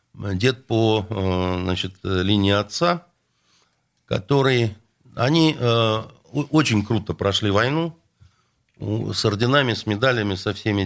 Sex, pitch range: male, 105-145 Hz